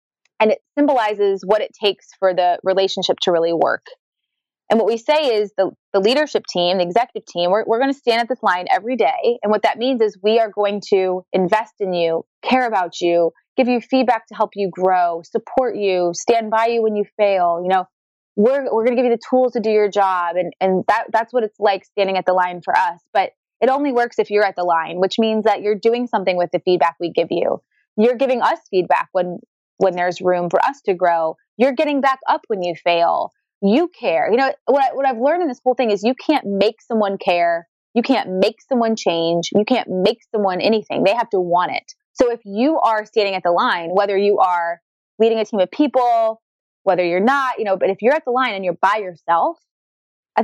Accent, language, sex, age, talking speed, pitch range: American, English, female, 20-39, 235 wpm, 180-245 Hz